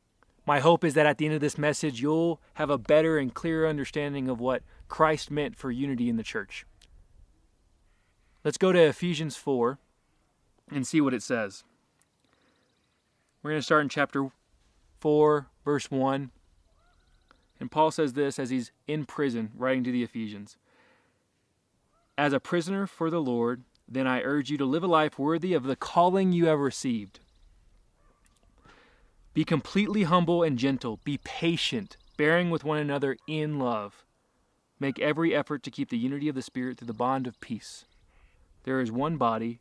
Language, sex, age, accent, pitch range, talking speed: English, male, 20-39, American, 120-155 Hz, 165 wpm